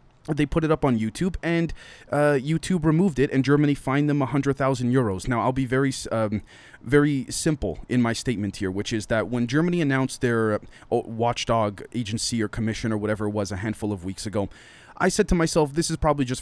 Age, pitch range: 20-39, 110-135 Hz